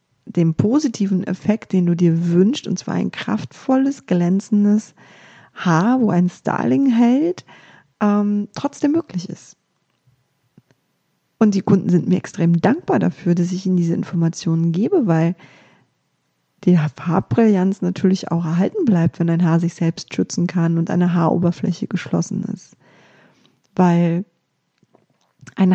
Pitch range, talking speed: 170-215 Hz, 130 wpm